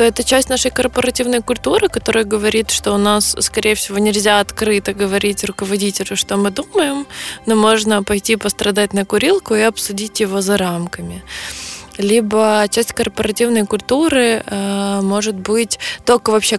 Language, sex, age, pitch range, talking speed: Russian, female, 20-39, 190-220 Hz, 140 wpm